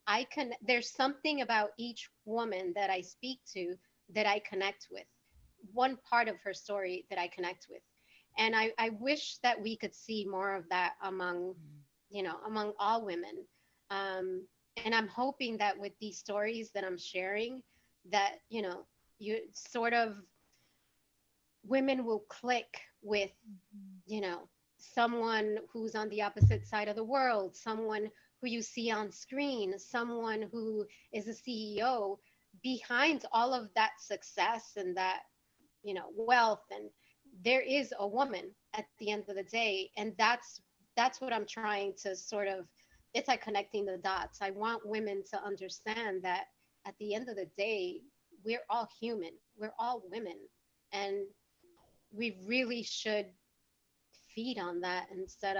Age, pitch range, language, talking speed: 30-49, 195-235 Hz, English, 155 wpm